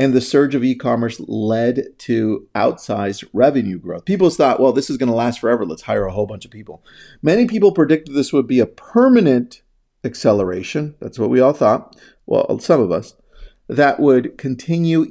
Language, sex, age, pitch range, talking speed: English, male, 40-59, 110-140 Hz, 185 wpm